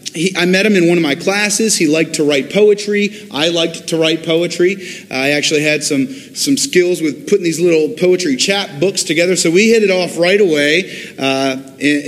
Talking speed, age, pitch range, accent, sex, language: 210 wpm, 30-49, 150-180 Hz, American, male, English